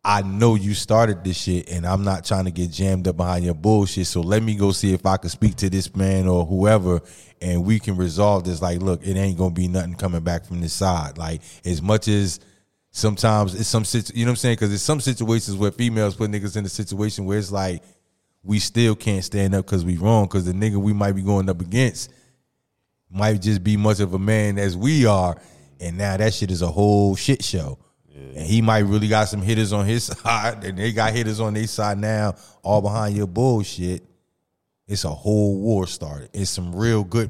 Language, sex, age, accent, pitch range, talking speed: English, male, 20-39, American, 90-105 Hz, 230 wpm